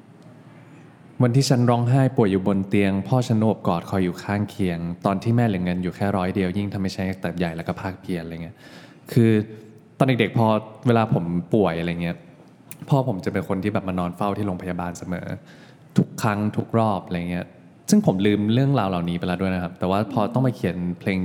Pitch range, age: 95-115 Hz, 20-39